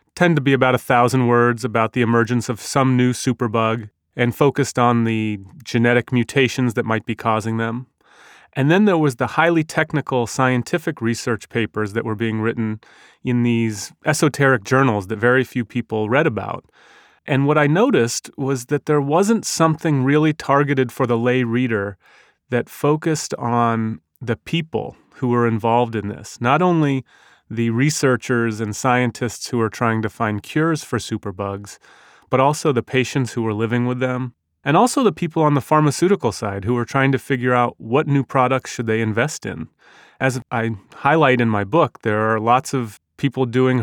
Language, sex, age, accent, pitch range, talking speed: English, male, 30-49, American, 115-135 Hz, 180 wpm